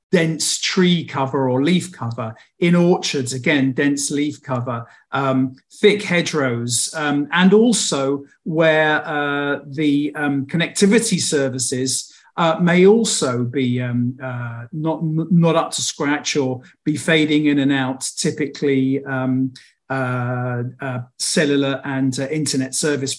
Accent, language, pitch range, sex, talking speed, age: British, English, 135-155 Hz, male, 130 wpm, 50-69